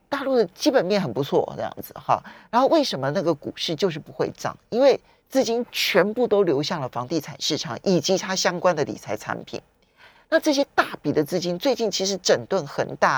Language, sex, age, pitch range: Chinese, male, 40-59, 155-250 Hz